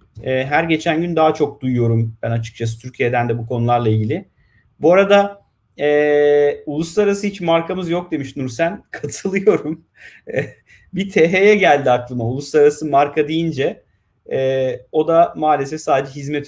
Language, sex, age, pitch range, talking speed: Turkish, male, 30-49, 115-165 Hz, 130 wpm